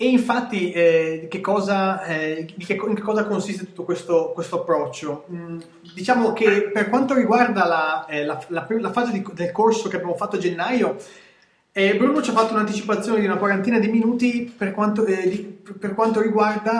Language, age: Italian, 30-49